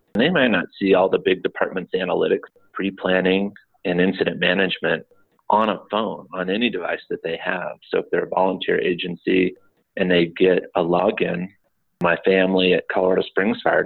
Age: 30-49